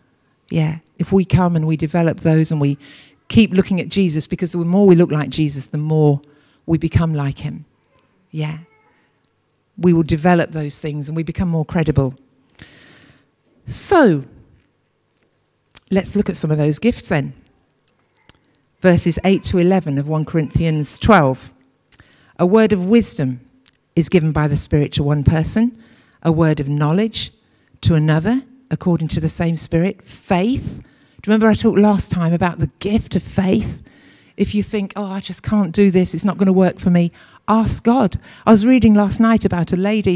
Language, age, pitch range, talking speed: English, 50-69, 150-200 Hz, 175 wpm